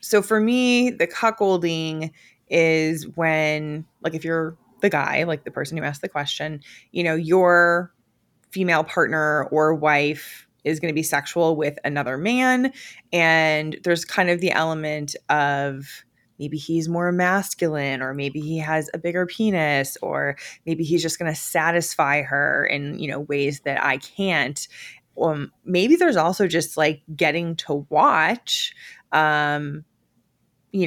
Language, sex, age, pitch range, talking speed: English, female, 20-39, 145-175 Hz, 150 wpm